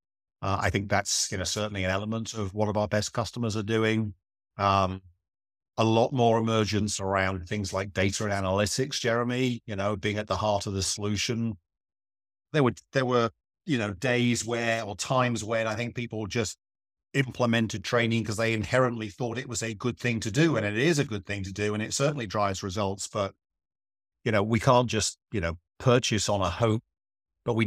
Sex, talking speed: male, 200 wpm